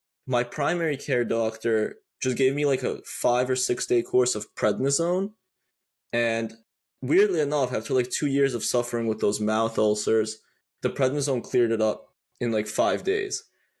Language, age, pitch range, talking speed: English, 20-39, 110-130 Hz, 165 wpm